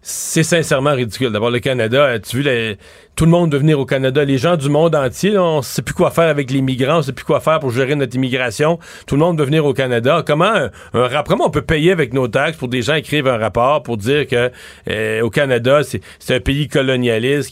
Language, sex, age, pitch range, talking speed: French, male, 40-59, 125-160 Hz, 250 wpm